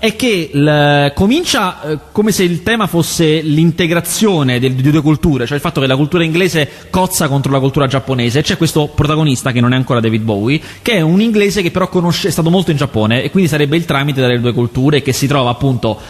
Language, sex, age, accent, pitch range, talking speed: Italian, male, 30-49, native, 130-195 Hz, 225 wpm